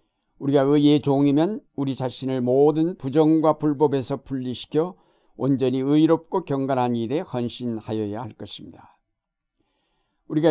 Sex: male